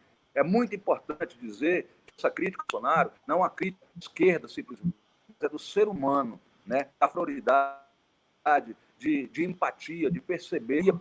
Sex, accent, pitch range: male, Brazilian, 165-250 Hz